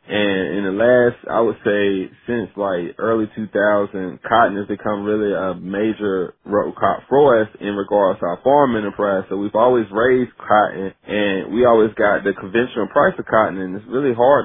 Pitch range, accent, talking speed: 100-115 Hz, American, 185 wpm